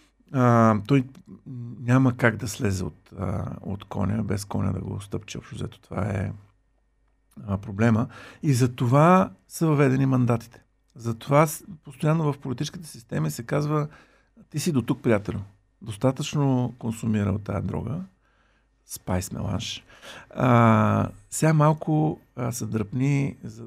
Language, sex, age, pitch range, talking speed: Bulgarian, male, 50-69, 110-140 Hz, 135 wpm